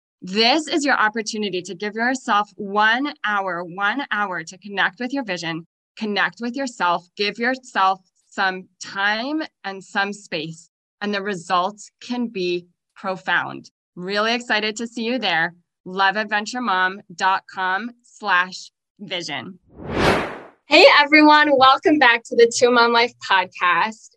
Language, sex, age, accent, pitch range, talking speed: English, female, 20-39, American, 185-225 Hz, 125 wpm